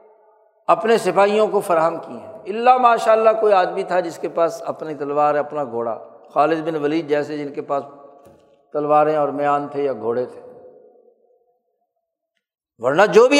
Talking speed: 160 wpm